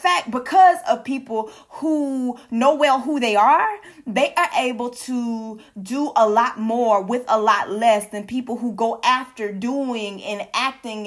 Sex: female